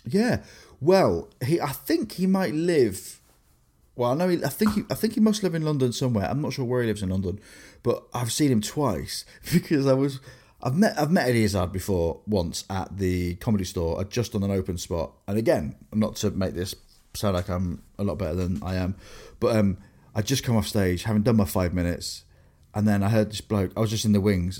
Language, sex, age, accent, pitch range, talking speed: English, male, 30-49, British, 95-125 Hz, 235 wpm